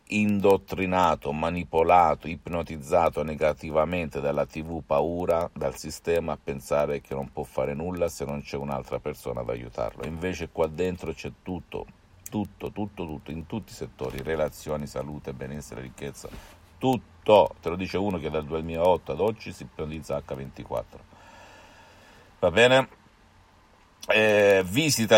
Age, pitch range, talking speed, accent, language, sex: 50-69, 80-105 Hz, 135 wpm, native, Italian, male